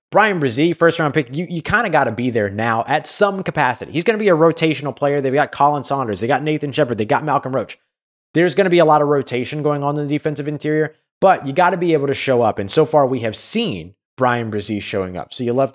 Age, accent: 20-39, American